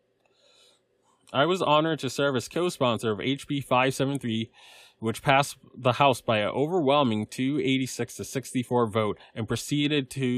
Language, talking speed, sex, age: English, 140 wpm, male, 20-39